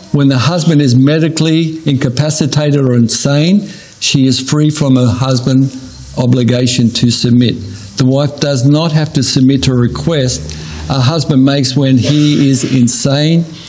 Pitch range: 120-145 Hz